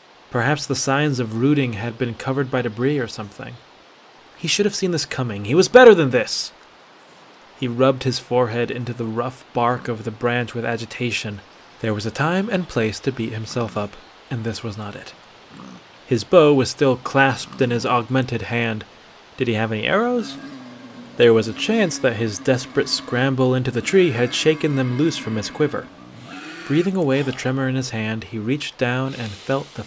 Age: 30-49